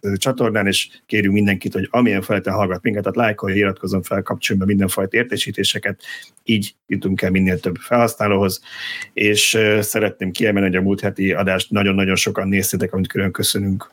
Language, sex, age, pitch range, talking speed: Hungarian, male, 30-49, 95-110 Hz, 170 wpm